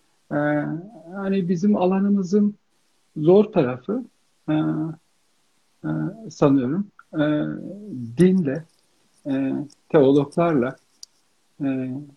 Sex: male